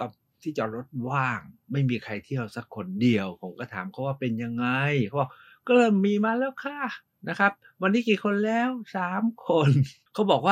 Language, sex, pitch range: Thai, male, 120-185 Hz